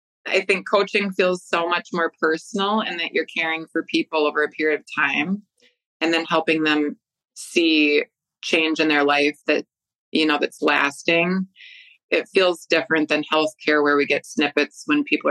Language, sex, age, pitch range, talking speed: English, female, 20-39, 155-180 Hz, 175 wpm